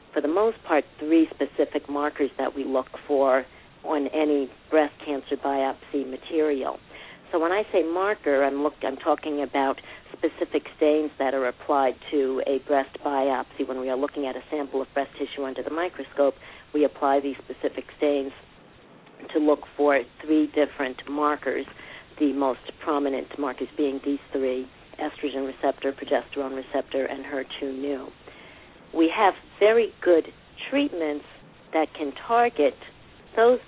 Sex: female